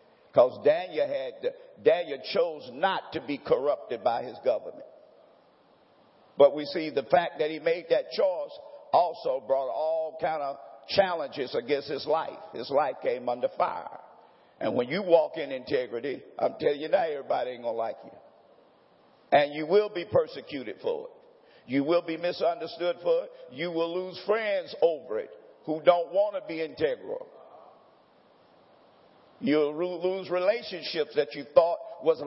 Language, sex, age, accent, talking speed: English, male, 50-69, American, 155 wpm